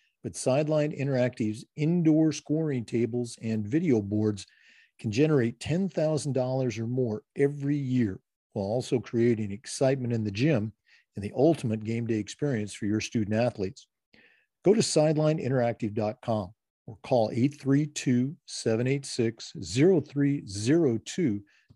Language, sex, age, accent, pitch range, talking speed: English, male, 50-69, American, 110-135 Hz, 110 wpm